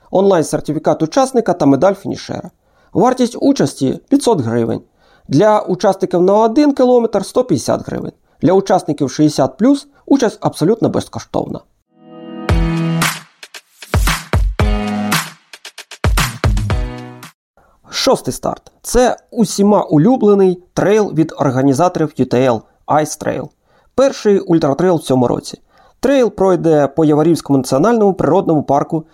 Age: 40-59